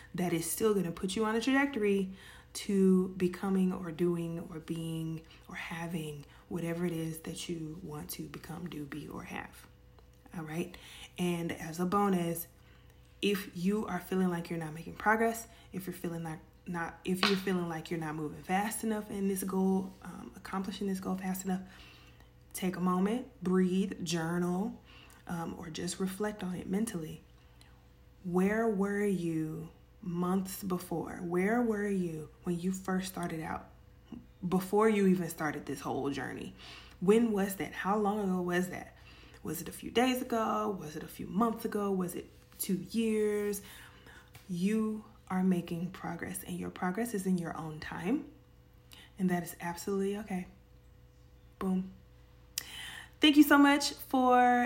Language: English